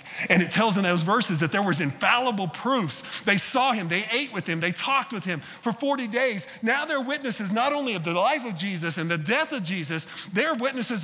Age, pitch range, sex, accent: 40-59, 165-245 Hz, male, American